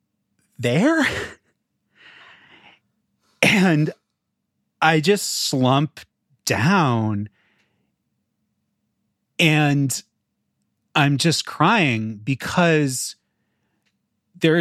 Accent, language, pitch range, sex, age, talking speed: American, English, 115-150 Hz, male, 30-49, 50 wpm